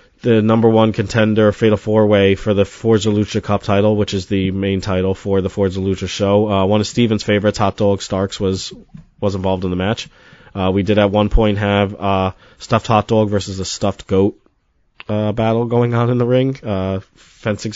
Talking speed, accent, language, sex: 205 wpm, American, English, male